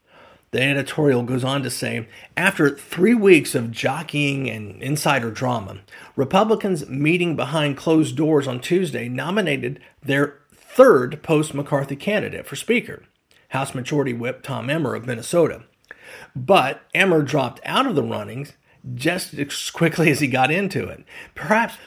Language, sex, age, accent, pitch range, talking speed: English, male, 40-59, American, 125-155 Hz, 140 wpm